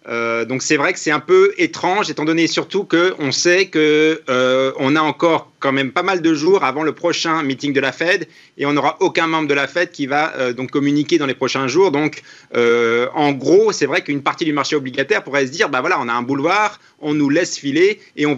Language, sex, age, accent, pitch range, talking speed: French, male, 30-49, French, 145-205 Hz, 245 wpm